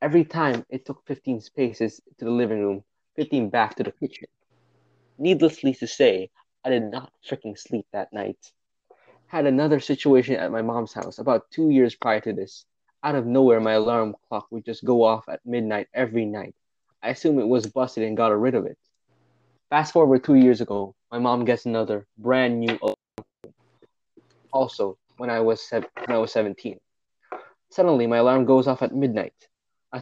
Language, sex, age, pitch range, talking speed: English, male, 20-39, 115-135 Hz, 180 wpm